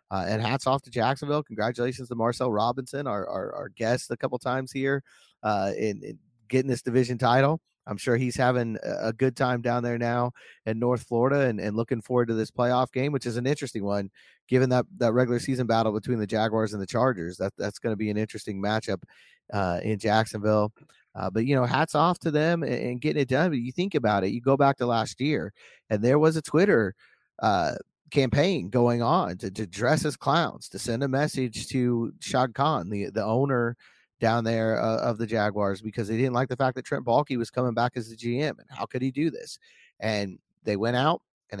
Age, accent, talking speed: 30-49, American, 220 wpm